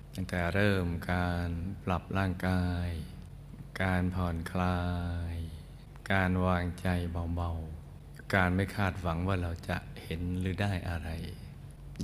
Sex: male